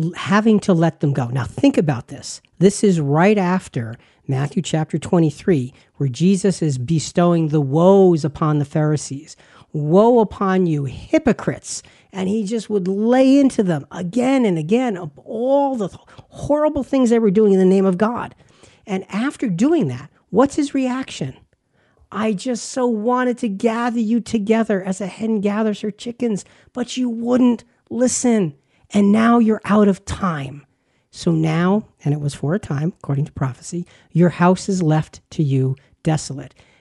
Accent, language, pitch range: American, English, 155-225 Hz